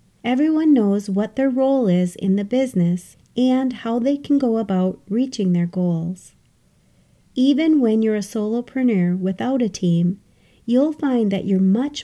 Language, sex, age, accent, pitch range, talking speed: English, female, 40-59, American, 190-255 Hz, 155 wpm